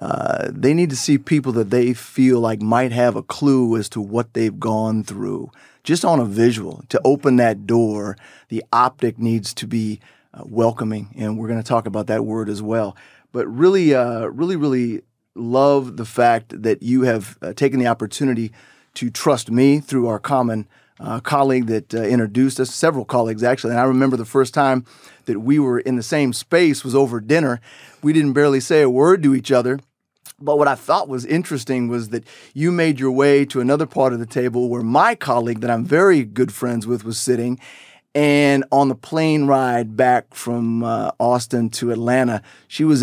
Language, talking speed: English, 200 wpm